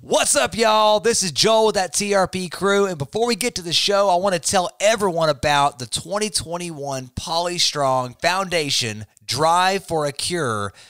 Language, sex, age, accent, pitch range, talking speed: English, male, 30-49, American, 135-170 Hz, 175 wpm